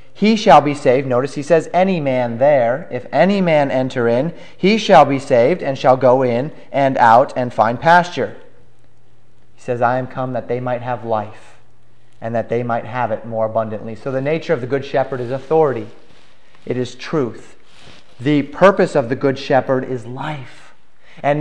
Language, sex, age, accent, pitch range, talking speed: English, male, 30-49, American, 135-170 Hz, 190 wpm